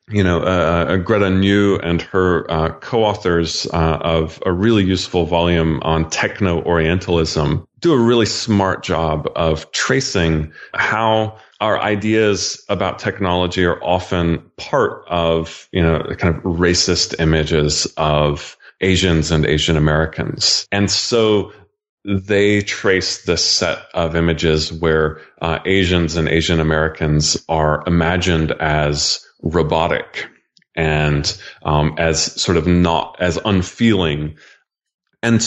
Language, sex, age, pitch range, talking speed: English, male, 30-49, 80-100 Hz, 120 wpm